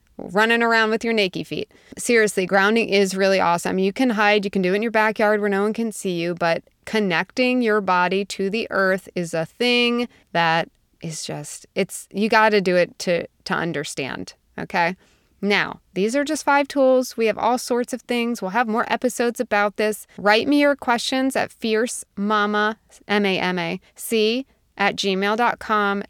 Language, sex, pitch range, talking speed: English, female, 195-240 Hz, 185 wpm